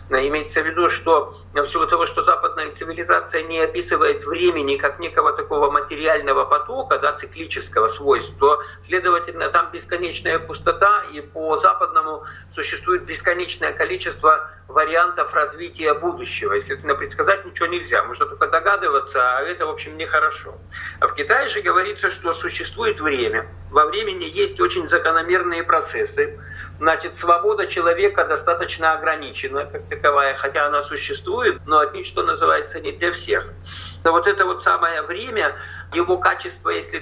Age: 50-69